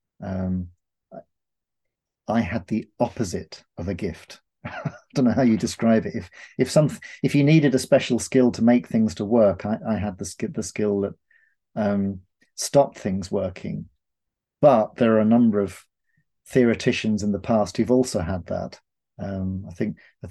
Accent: British